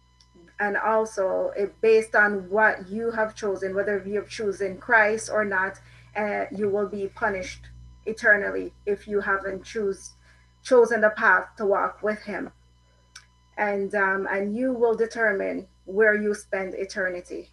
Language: English